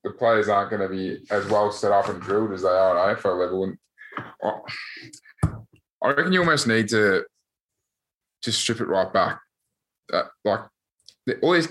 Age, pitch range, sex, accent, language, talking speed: 20-39, 100-115 Hz, male, Australian, English, 175 wpm